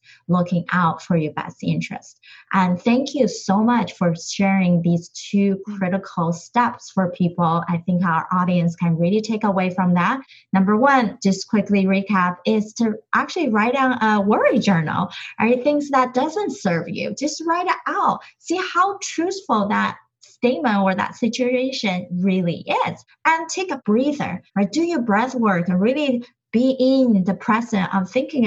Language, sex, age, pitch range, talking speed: English, female, 20-39, 180-250 Hz, 165 wpm